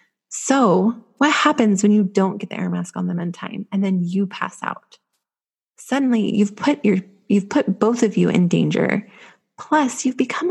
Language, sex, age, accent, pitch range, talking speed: English, female, 30-49, American, 200-250 Hz, 190 wpm